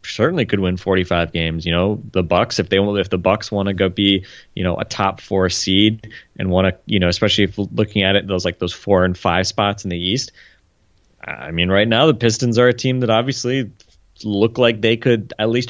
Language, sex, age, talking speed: English, male, 20-39, 235 wpm